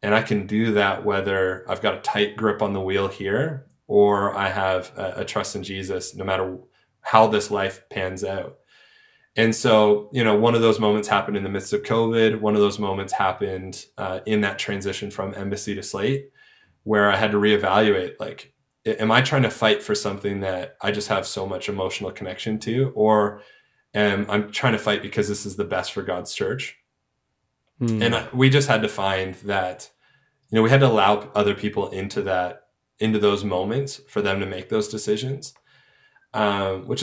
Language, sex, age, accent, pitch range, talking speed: English, male, 20-39, American, 100-115 Hz, 195 wpm